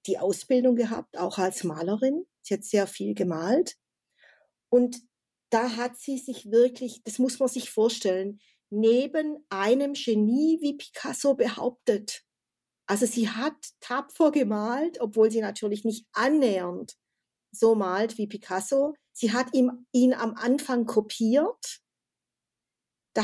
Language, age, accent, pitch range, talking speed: German, 50-69, German, 210-255 Hz, 130 wpm